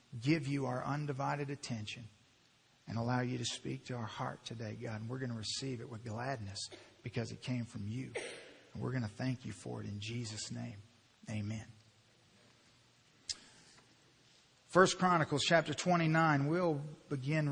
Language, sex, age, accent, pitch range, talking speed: English, male, 50-69, American, 130-175 Hz, 160 wpm